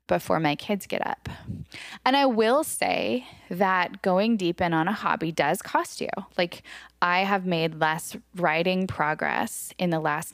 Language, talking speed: English, 170 wpm